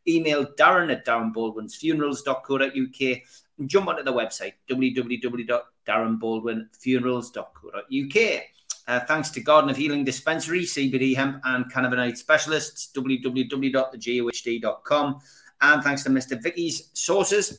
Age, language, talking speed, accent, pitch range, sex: 30-49, English, 105 wpm, British, 120-155 Hz, male